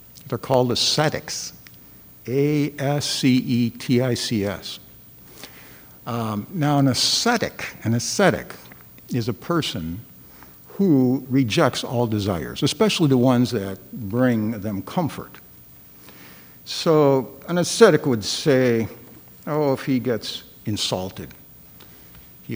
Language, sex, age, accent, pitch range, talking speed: English, male, 60-79, American, 100-145 Hz, 90 wpm